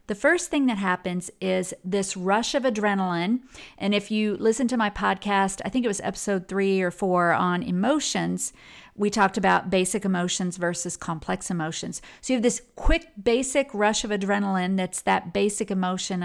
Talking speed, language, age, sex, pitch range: 175 wpm, English, 50-69, female, 185-225 Hz